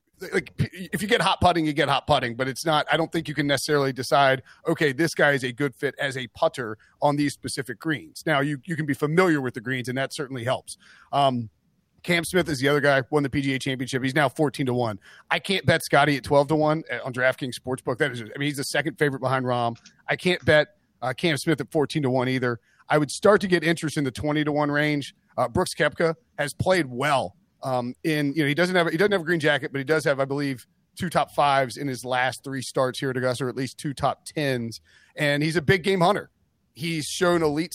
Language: English